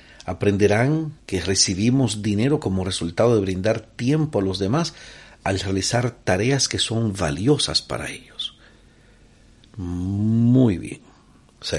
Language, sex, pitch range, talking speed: Spanish, male, 95-120 Hz, 120 wpm